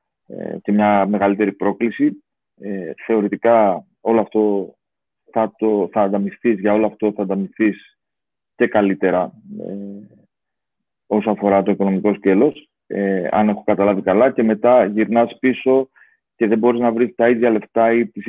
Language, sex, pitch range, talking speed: Greek, male, 105-125 Hz, 140 wpm